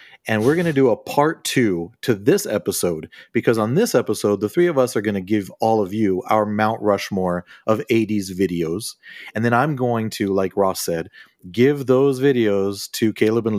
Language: English